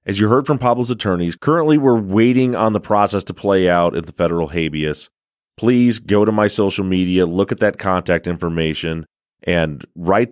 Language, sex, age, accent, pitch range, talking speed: English, male, 30-49, American, 90-115 Hz, 185 wpm